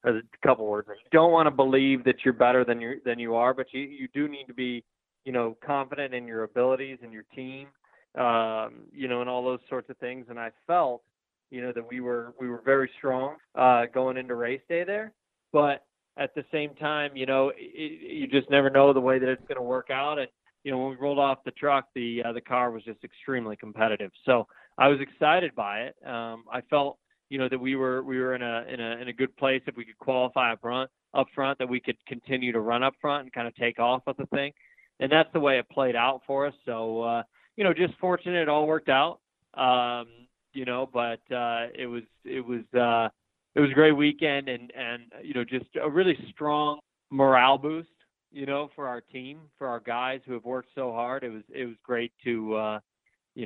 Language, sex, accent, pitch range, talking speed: English, male, American, 120-140 Hz, 230 wpm